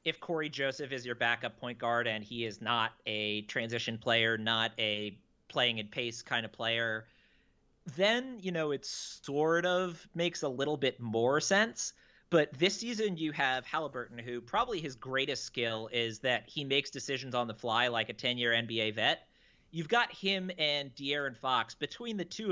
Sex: male